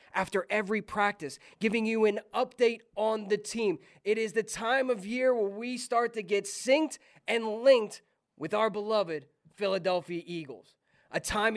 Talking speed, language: 160 wpm, English